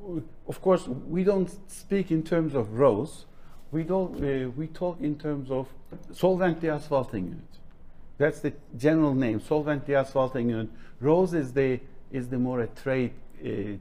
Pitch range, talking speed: 115-155 Hz, 150 wpm